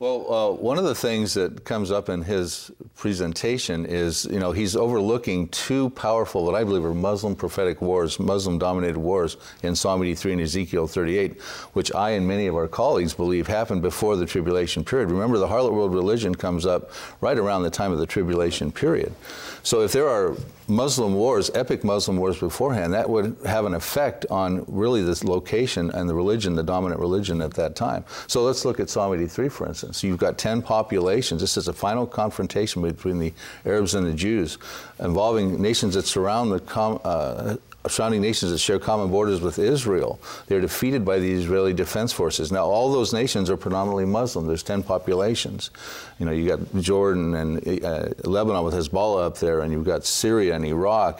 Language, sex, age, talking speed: English, male, 50-69, 190 wpm